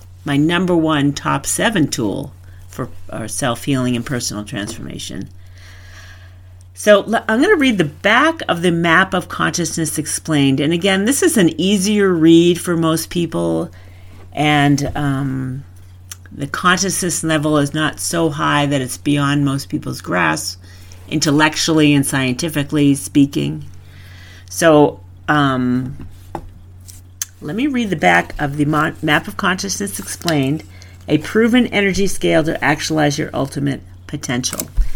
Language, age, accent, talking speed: English, 50-69, American, 130 wpm